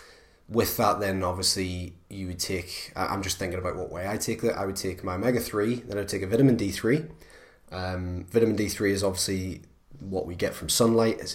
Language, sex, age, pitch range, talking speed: English, male, 20-39, 90-105 Hz, 205 wpm